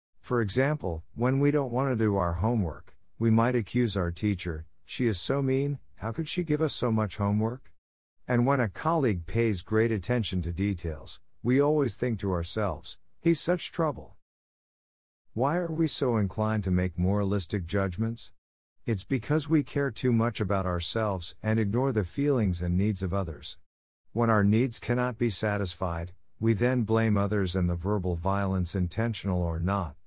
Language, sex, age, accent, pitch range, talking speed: English, male, 50-69, American, 90-120 Hz, 170 wpm